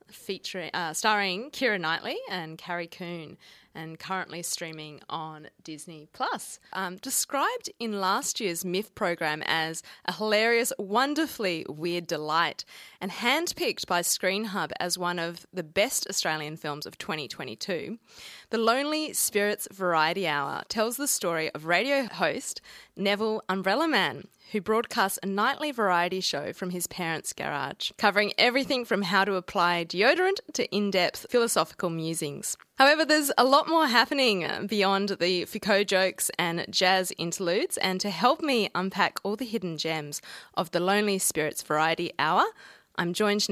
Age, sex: 20-39, female